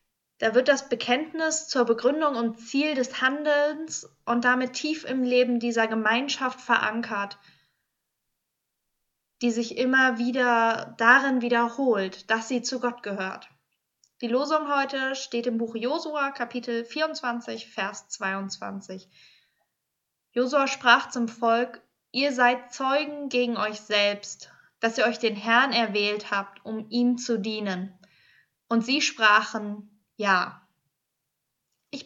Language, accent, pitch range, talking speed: German, German, 215-255 Hz, 125 wpm